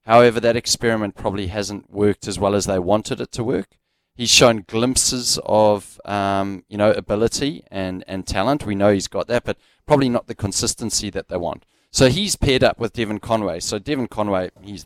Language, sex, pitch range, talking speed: English, male, 100-120 Hz, 200 wpm